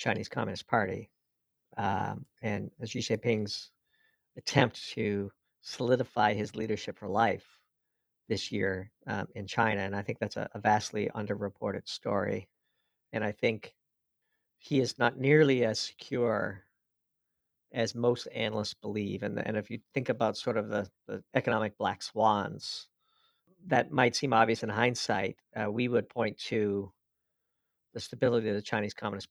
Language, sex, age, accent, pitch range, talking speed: English, male, 50-69, American, 105-120 Hz, 145 wpm